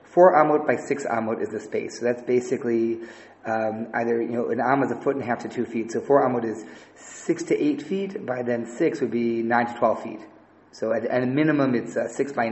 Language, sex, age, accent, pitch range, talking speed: English, male, 30-49, American, 115-155 Hz, 250 wpm